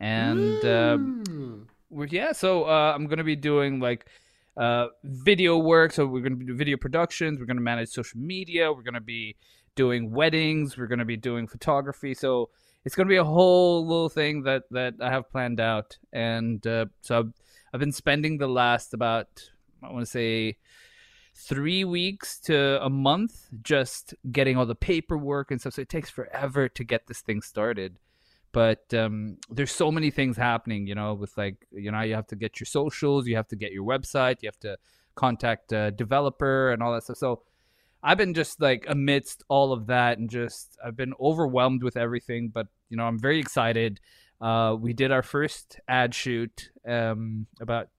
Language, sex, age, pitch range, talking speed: English, male, 20-39, 115-145 Hz, 195 wpm